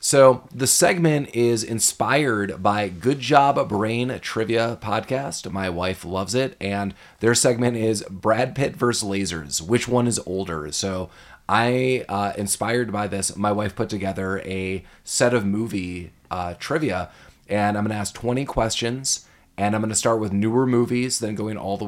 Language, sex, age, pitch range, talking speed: English, male, 30-49, 95-120 Hz, 175 wpm